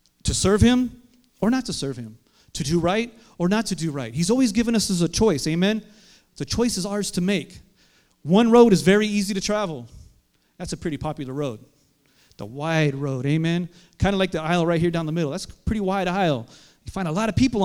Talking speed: 230 wpm